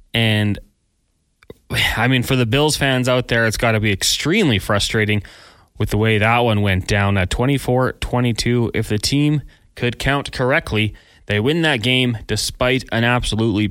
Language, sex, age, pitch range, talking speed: English, male, 20-39, 105-125 Hz, 165 wpm